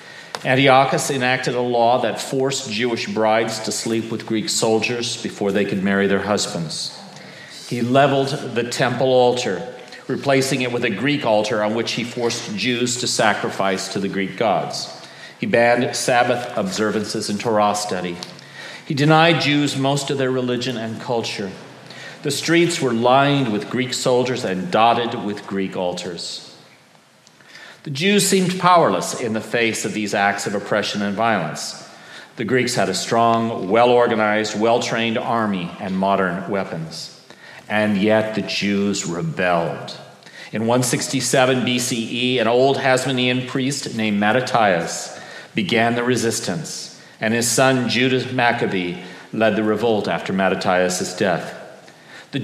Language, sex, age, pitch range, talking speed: English, male, 40-59, 105-130 Hz, 140 wpm